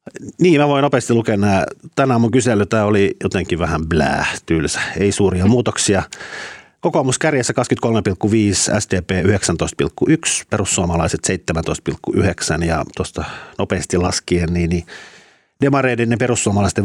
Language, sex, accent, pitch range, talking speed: Finnish, male, native, 85-115 Hz, 115 wpm